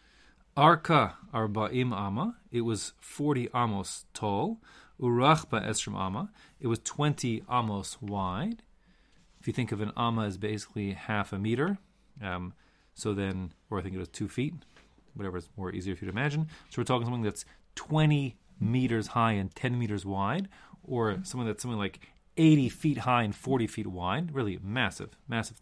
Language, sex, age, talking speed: English, male, 30-49, 170 wpm